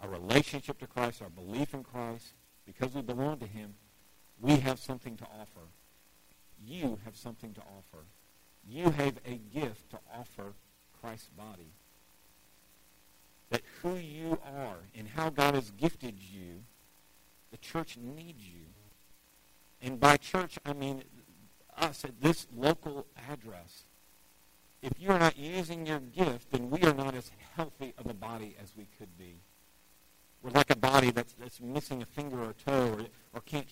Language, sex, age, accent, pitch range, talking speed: English, male, 50-69, American, 100-140 Hz, 160 wpm